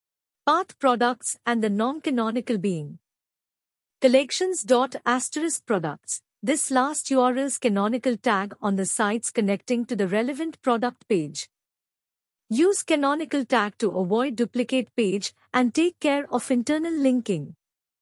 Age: 50-69